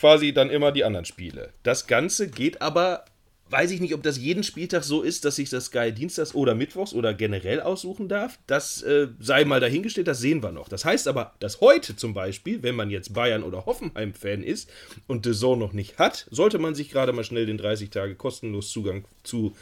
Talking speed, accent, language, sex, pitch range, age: 215 wpm, German, German, male, 110-170 Hz, 30-49